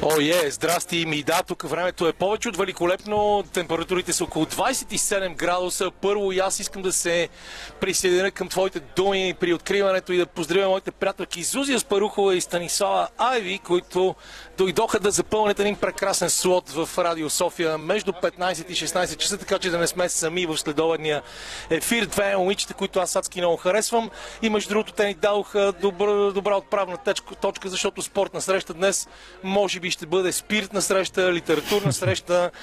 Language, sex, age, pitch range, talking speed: Bulgarian, male, 40-59, 165-195 Hz, 170 wpm